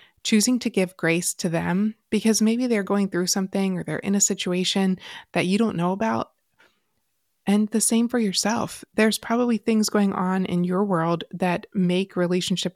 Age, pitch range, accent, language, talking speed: 20-39, 175-210 Hz, American, English, 180 wpm